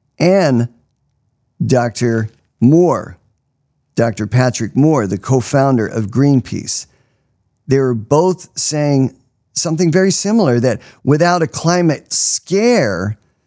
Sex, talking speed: male, 100 wpm